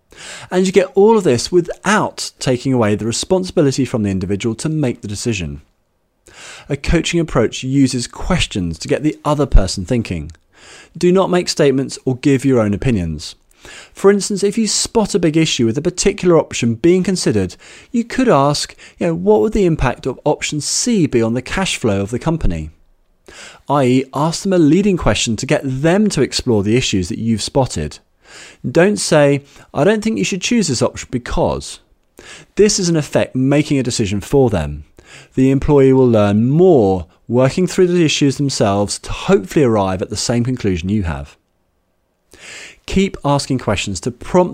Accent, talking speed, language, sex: British, 180 wpm, English, male